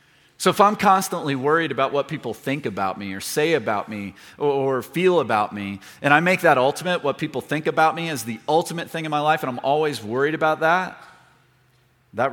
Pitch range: 130-165 Hz